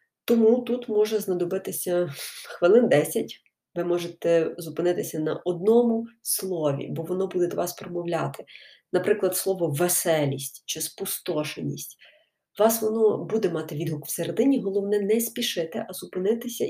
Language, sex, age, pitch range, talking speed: Ukrainian, female, 20-39, 165-225 Hz, 120 wpm